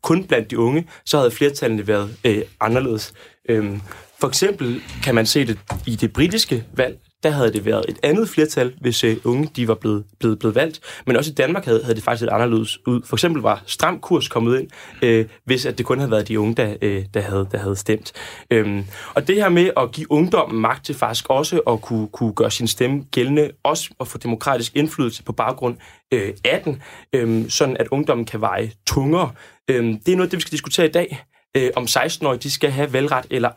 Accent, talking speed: native, 215 wpm